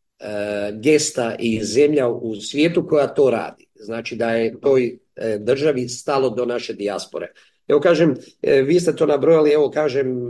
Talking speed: 145 wpm